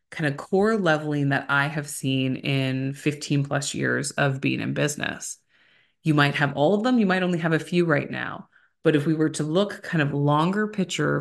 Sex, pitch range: female, 140-170 Hz